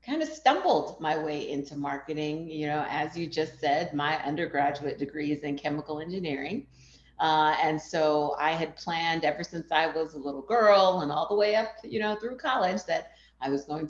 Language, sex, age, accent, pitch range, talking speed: English, female, 40-59, American, 150-185 Hz, 205 wpm